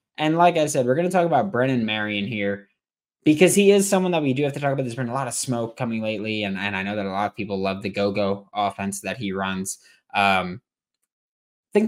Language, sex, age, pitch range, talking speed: English, male, 20-39, 100-135 Hz, 250 wpm